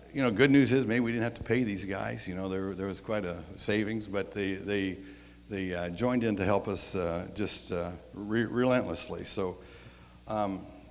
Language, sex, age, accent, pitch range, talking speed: English, male, 60-79, American, 90-110 Hz, 210 wpm